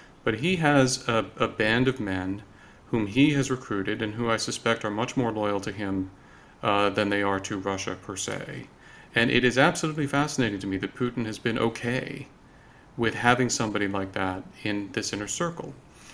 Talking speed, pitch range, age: 190 wpm, 105-130 Hz, 40-59